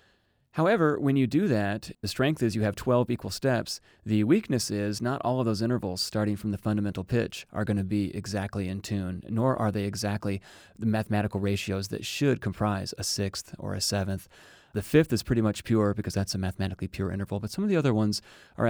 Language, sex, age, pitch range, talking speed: English, male, 30-49, 100-115 Hz, 215 wpm